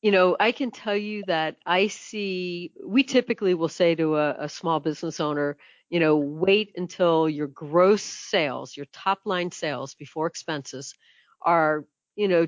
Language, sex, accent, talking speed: English, female, American, 170 wpm